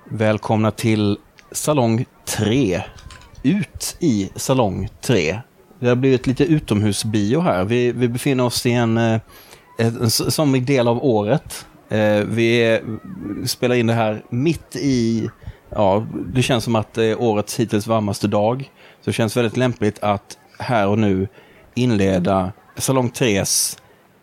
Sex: male